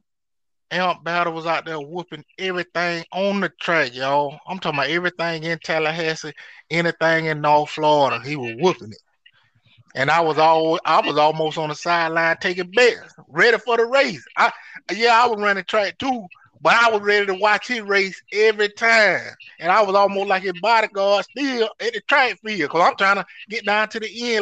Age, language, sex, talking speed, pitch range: 20-39, English, male, 195 wpm, 150-195 Hz